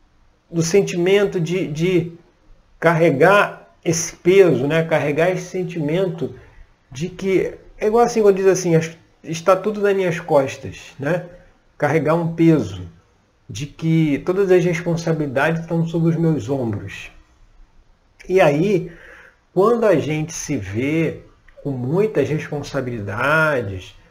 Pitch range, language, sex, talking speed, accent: 135-185 Hz, Portuguese, male, 120 wpm, Brazilian